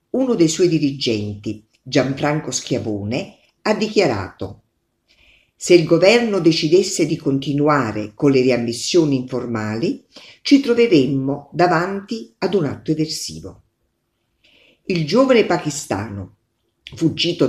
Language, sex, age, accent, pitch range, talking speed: Italian, female, 50-69, native, 120-185 Hz, 100 wpm